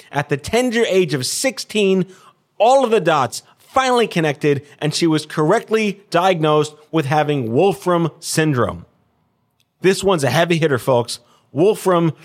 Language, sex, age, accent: English, male, 30-49, American